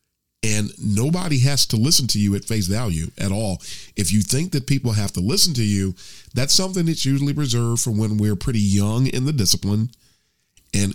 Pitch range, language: 100-125 Hz, English